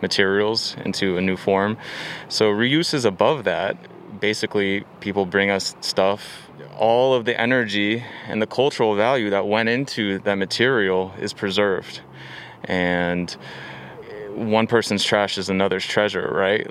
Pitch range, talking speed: 95-115 Hz, 135 wpm